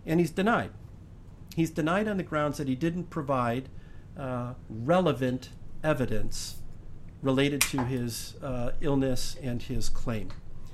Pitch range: 110-150 Hz